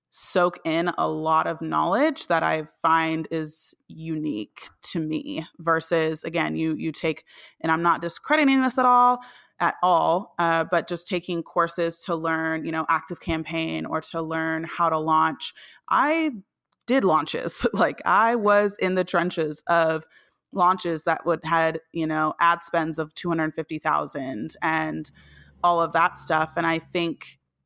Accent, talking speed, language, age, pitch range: American, 155 wpm, English, 20-39, 160-205 Hz